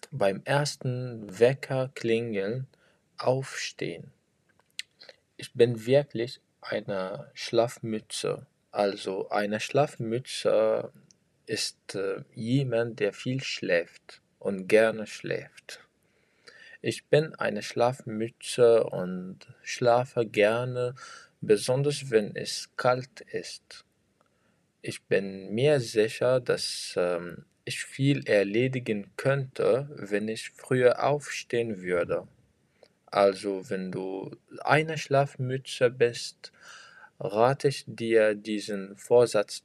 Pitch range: 105-135 Hz